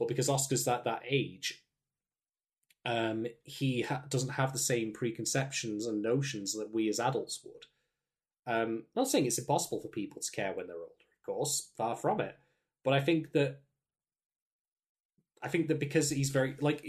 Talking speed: 180 wpm